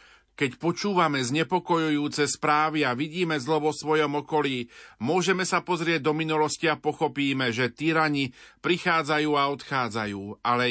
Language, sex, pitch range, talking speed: Slovak, male, 130-155 Hz, 130 wpm